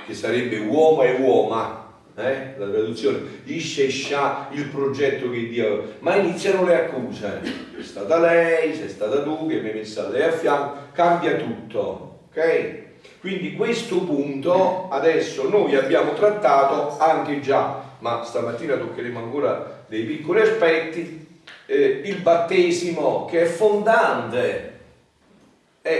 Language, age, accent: Italian, 40-59, native